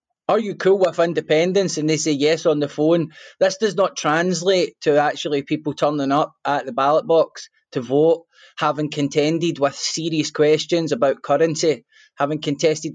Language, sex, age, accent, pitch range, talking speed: English, male, 20-39, British, 150-190 Hz, 165 wpm